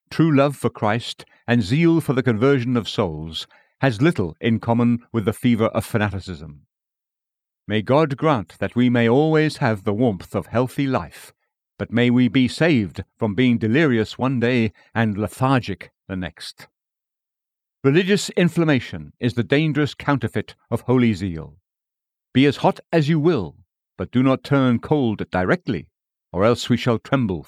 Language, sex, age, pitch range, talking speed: English, male, 60-79, 110-145 Hz, 160 wpm